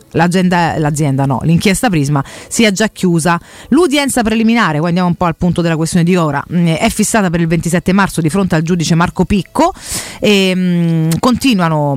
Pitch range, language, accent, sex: 160-220 Hz, Italian, native, female